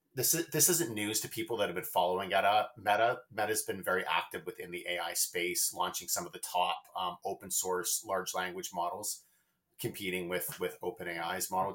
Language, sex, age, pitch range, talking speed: English, male, 30-49, 90-115 Hz, 185 wpm